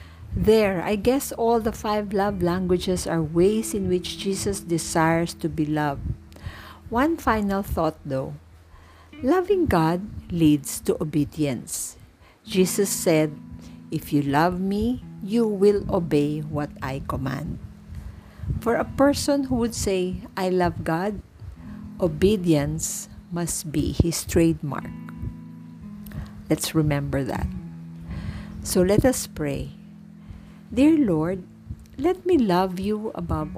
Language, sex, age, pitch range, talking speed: English, female, 50-69, 145-205 Hz, 120 wpm